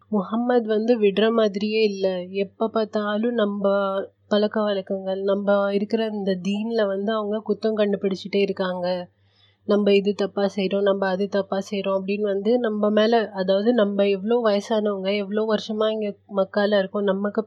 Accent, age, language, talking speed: native, 30-49, Tamil, 140 wpm